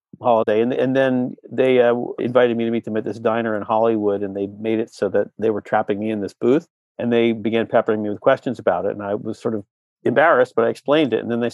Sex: male